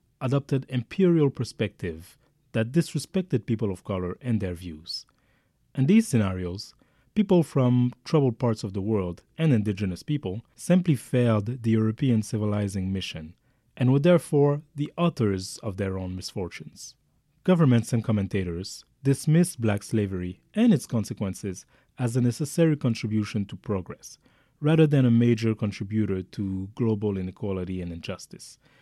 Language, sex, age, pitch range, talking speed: English, male, 30-49, 100-135 Hz, 135 wpm